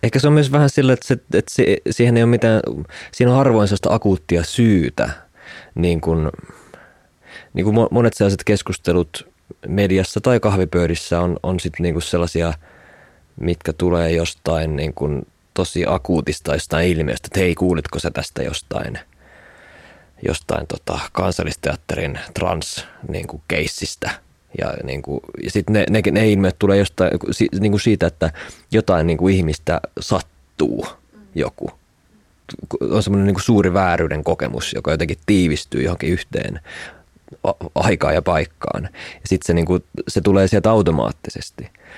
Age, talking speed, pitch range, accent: 20-39, 135 wpm, 85-105 Hz, native